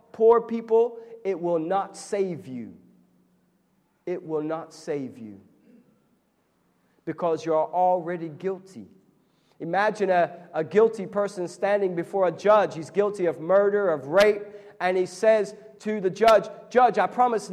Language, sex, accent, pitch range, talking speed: English, male, American, 175-230 Hz, 135 wpm